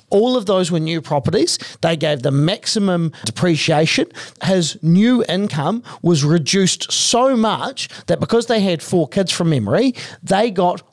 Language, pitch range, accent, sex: English, 150-195 Hz, Australian, male